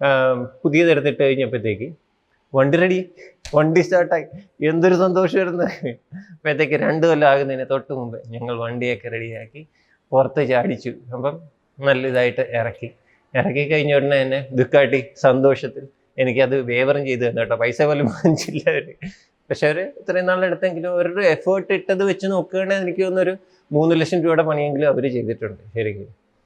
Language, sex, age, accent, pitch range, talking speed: Malayalam, male, 20-39, native, 130-170 Hz, 130 wpm